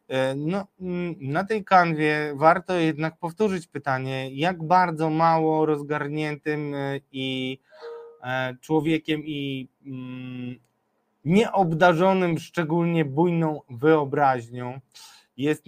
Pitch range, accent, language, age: 130-160 Hz, native, Polish, 20-39